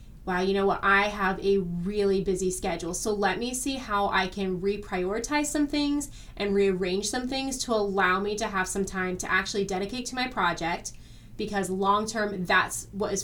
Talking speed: 195 wpm